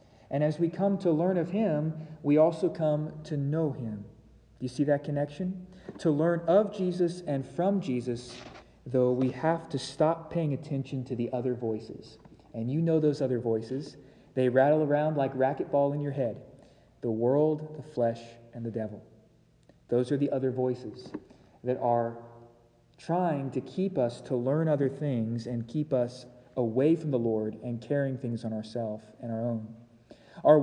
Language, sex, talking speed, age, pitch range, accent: English, male, 175 wpm, 40-59, 120-165 Hz, American